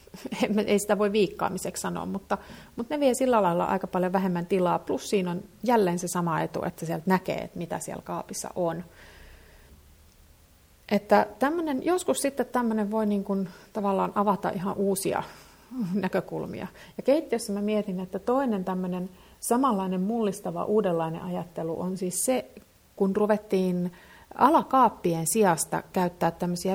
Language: Finnish